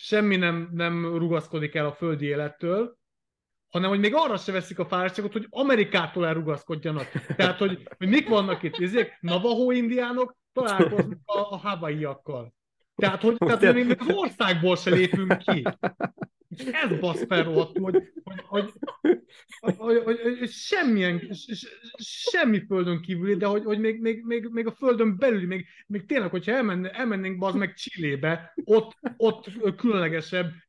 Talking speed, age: 155 wpm, 30-49